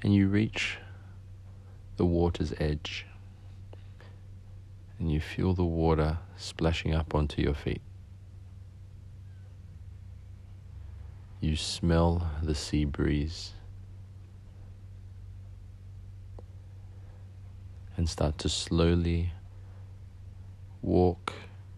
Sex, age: male, 40-59